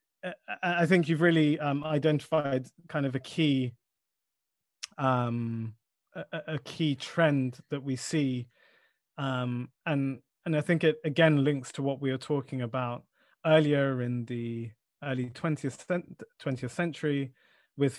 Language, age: English, 30-49